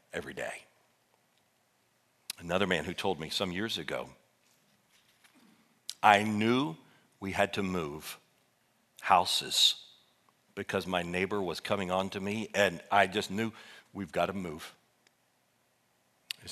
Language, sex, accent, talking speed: English, male, American, 125 wpm